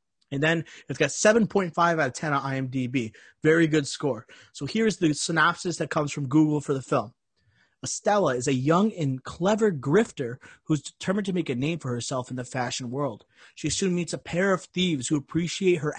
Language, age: English, 30-49